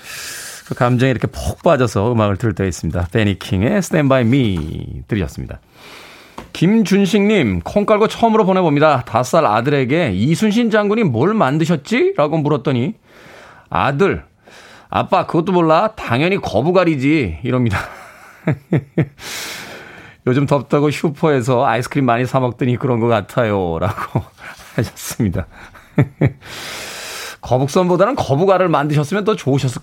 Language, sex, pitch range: Korean, male, 115-160 Hz